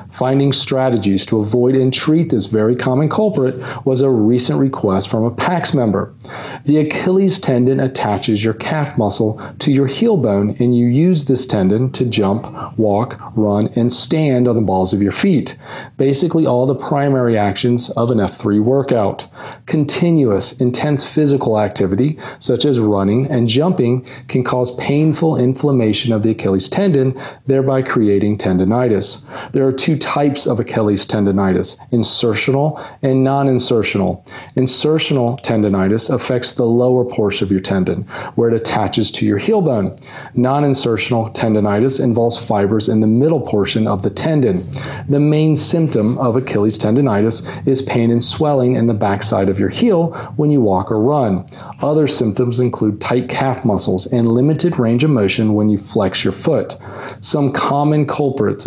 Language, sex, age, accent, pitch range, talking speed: English, male, 40-59, American, 110-140 Hz, 155 wpm